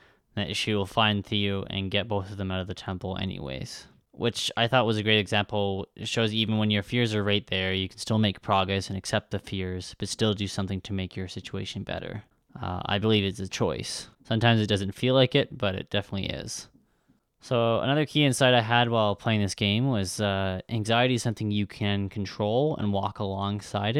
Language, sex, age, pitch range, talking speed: English, male, 20-39, 95-115 Hz, 220 wpm